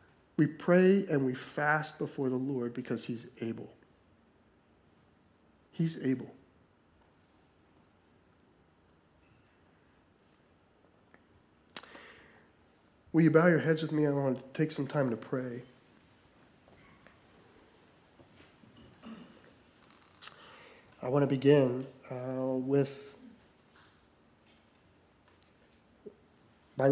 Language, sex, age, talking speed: English, male, 40-59, 80 wpm